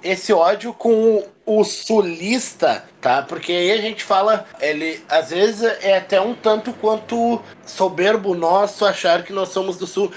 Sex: male